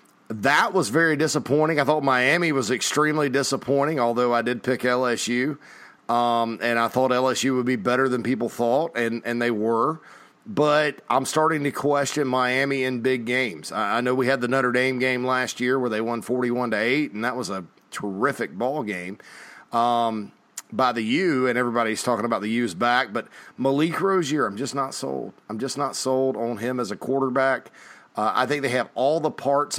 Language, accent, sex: English, American, male